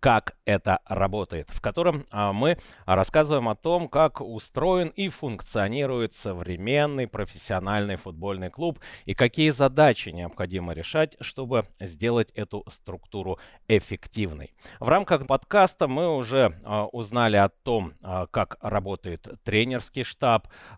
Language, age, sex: Russian, 30-49, male